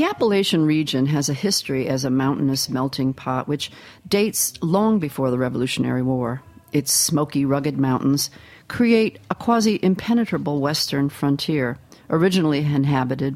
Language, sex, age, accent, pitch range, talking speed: English, female, 40-59, American, 135-180 Hz, 135 wpm